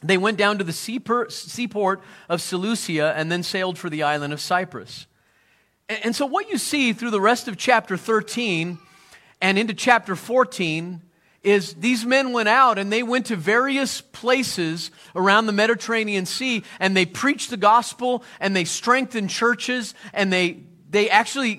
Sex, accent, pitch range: male, American, 190-245 Hz